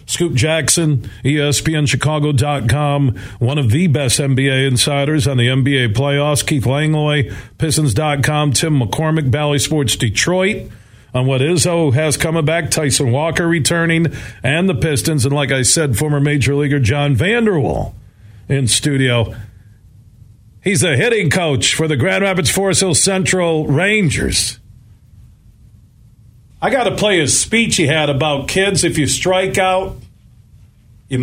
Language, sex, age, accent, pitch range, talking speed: English, male, 50-69, American, 115-155 Hz, 135 wpm